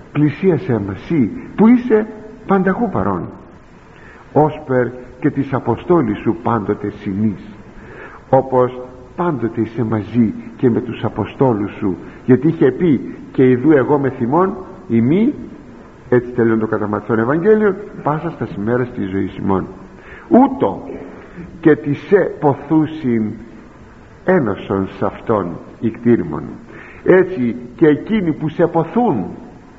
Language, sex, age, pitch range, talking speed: Greek, male, 50-69, 115-165 Hz, 115 wpm